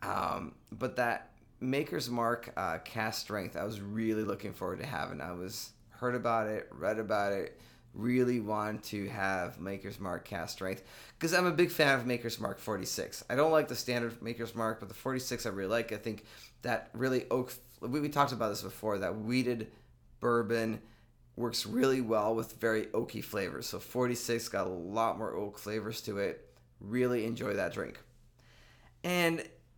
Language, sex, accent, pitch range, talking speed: English, male, American, 110-130 Hz, 180 wpm